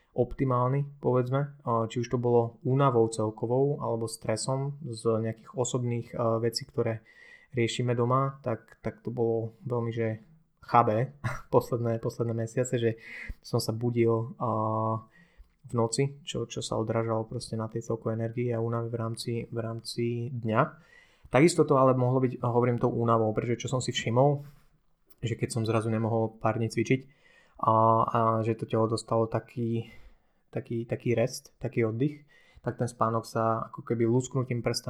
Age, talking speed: 20-39, 155 wpm